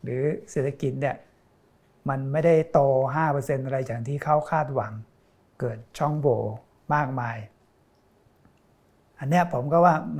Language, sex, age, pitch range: Thai, male, 60-79, 130-160 Hz